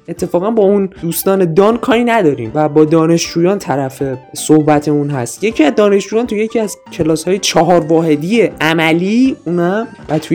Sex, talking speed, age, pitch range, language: male, 155 wpm, 20-39, 155-200 Hz, Persian